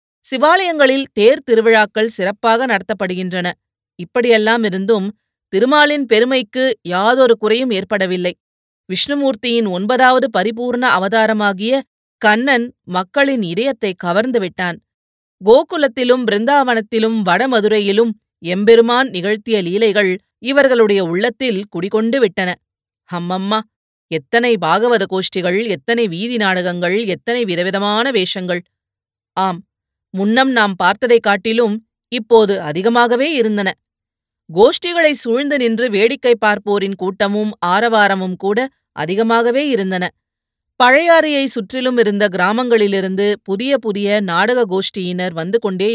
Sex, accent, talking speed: female, native, 90 wpm